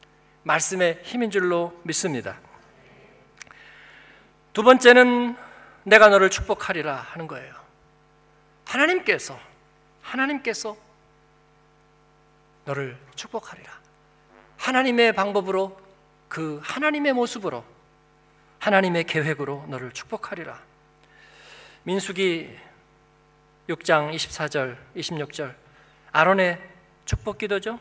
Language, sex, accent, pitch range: Korean, male, native, 150-235 Hz